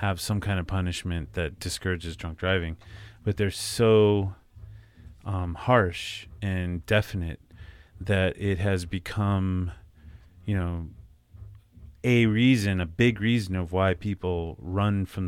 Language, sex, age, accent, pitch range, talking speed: English, male, 30-49, American, 90-100 Hz, 125 wpm